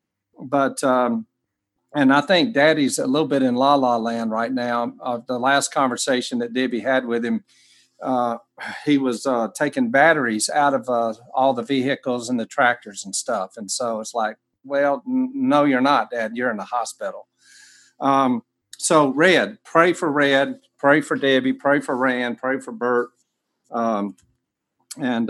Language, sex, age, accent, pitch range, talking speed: English, male, 50-69, American, 120-140 Hz, 170 wpm